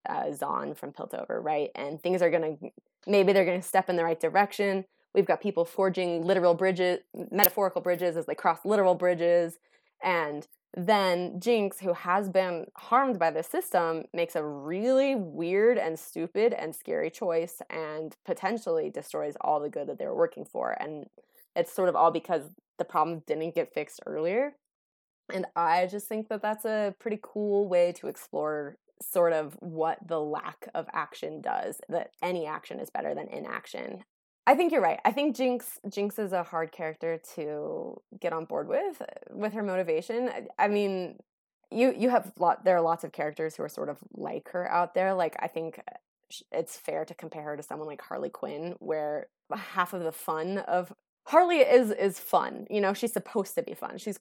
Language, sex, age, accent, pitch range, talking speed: English, female, 20-39, American, 165-215 Hz, 185 wpm